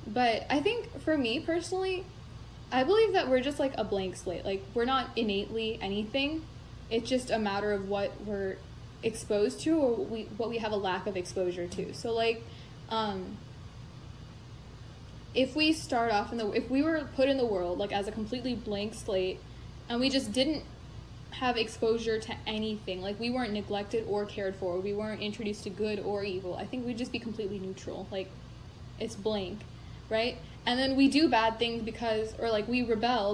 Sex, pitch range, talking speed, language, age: female, 190-245 Hz, 190 wpm, English, 10-29